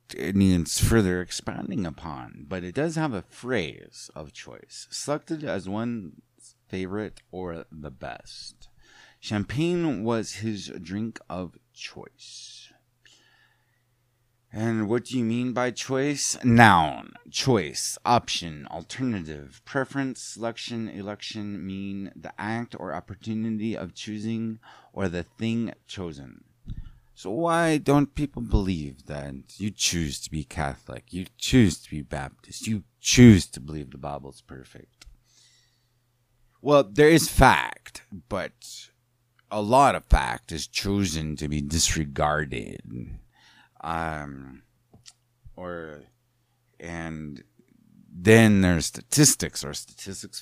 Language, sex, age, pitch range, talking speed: English, male, 30-49, 85-120 Hz, 115 wpm